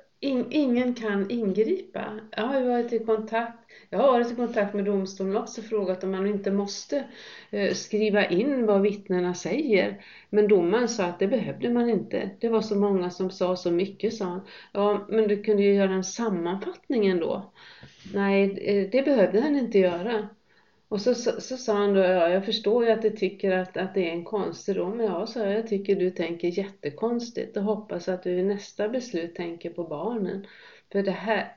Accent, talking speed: Swedish, 190 wpm